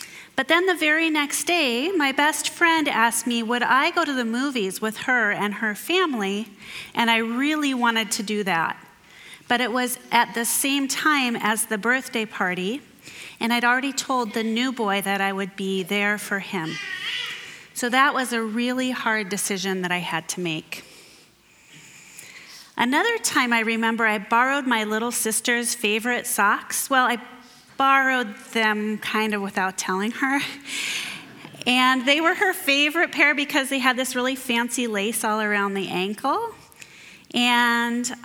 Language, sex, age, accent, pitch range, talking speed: English, female, 30-49, American, 210-270 Hz, 160 wpm